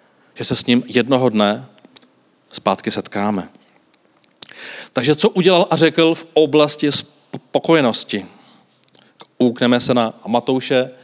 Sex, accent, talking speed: male, native, 110 wpm